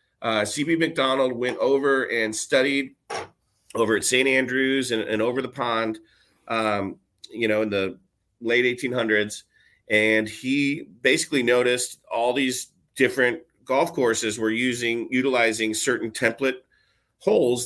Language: English